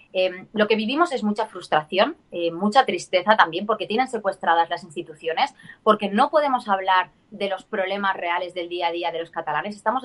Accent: Spanish